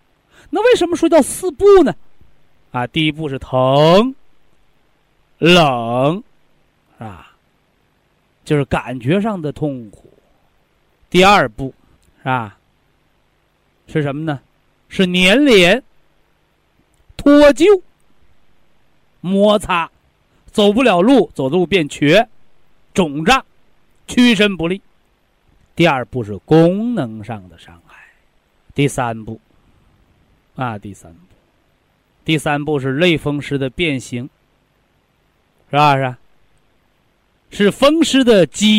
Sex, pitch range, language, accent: male, 125-205 Hz, Chinese, native